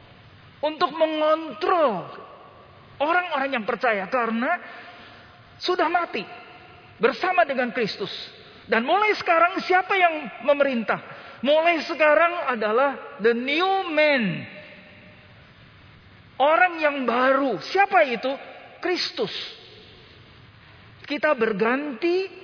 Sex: male